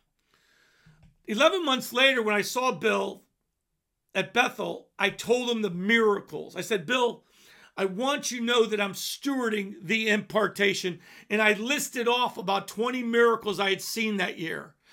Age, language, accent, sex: 50-69, English, American, male